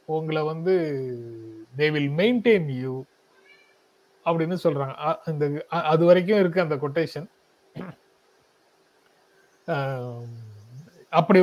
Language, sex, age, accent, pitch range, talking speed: Tamil, male, 30-49, native, 150-195 Hz, 65 wpm